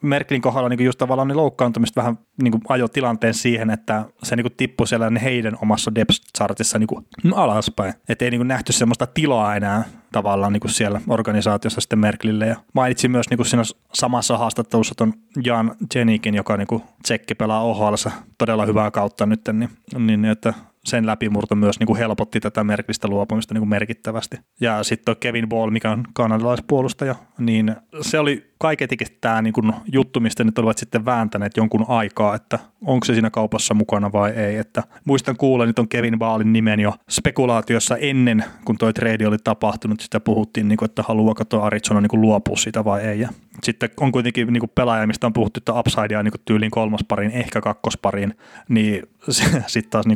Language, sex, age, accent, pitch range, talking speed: Finnish, male, 20-39, native, 110-120 Hz, 145 wpm